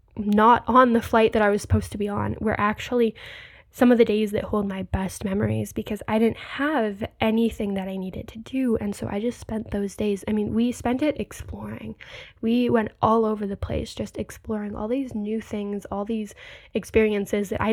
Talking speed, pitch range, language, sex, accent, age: 210 wpm, 205-235 Hz, English, female, American, 10-29